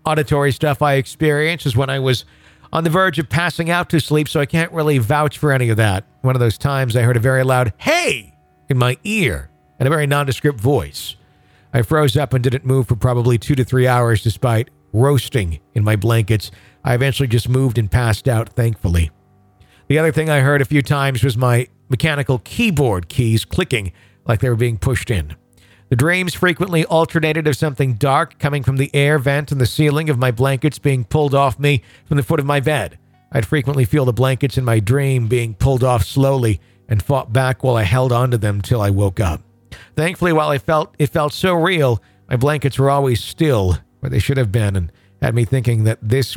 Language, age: English, 50-69